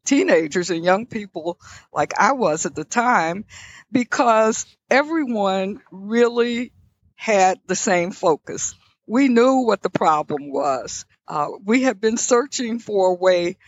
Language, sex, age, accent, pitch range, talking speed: English, female, 60-79, American, 180-235 Hz, 135 wpm